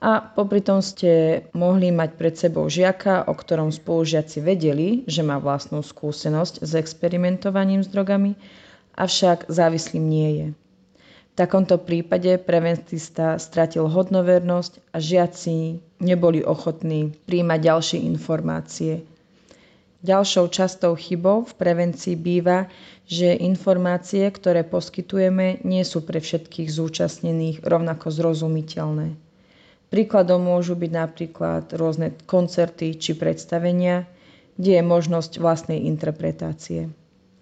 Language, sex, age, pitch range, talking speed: Slovak, female, 20-39, 160-185 Hz, 105 wpm